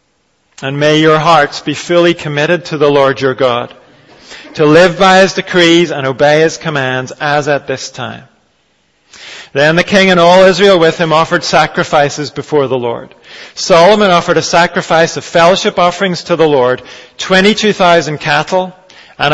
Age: 40-59